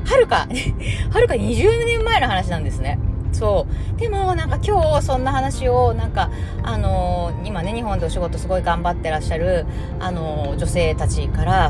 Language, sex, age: Japanese, female, 20-39